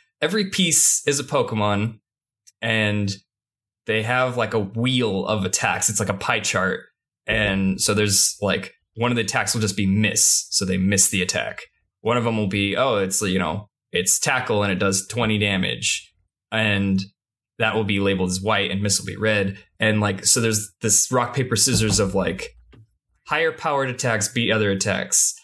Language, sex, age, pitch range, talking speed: English, male, 20-39, 100-125 Hz, 185 wpm